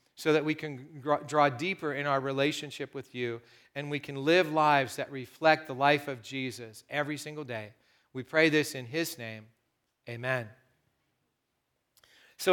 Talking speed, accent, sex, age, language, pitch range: 160 wpm, American, male, 40-59, English, 130-165 Hz